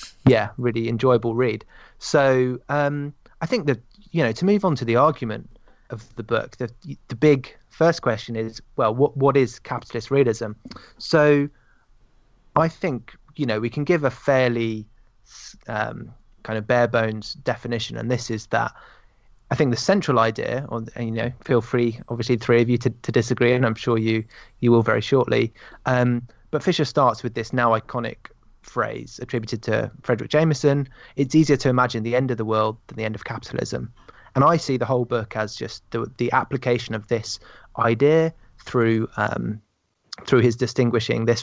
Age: 20-39